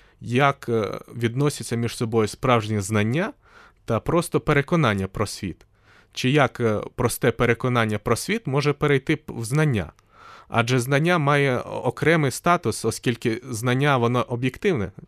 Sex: male